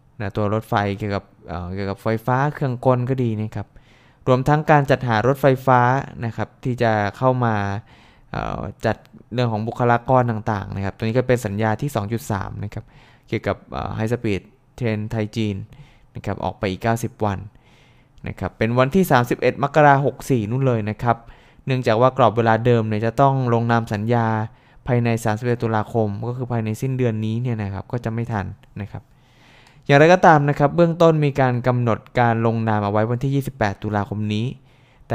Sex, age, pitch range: male, 20-39, 105-130 Hz